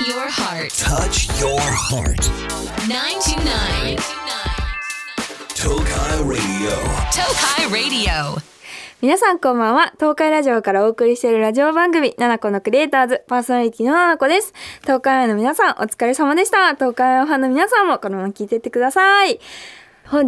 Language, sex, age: Japanese, female, 20-39